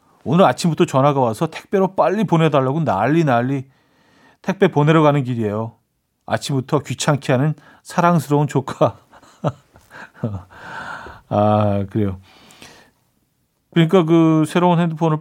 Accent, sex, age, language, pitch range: native, male, 40-59, Korean, 125-170 Hz